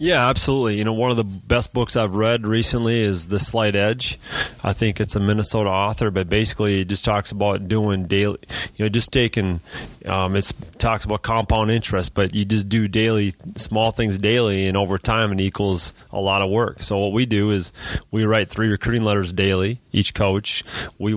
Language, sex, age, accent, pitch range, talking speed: English, male, 30-49, American, 100-110 Hz, 200 wpm